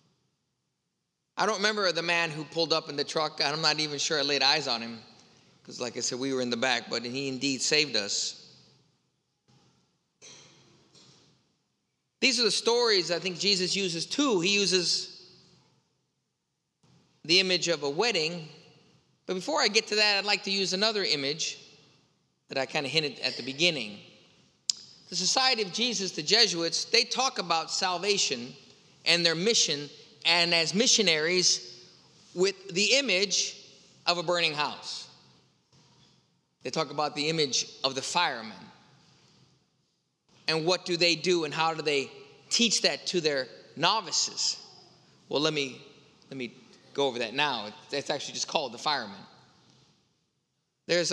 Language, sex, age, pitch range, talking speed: English, male, 30-49, 145-195 Hz, 155 wpm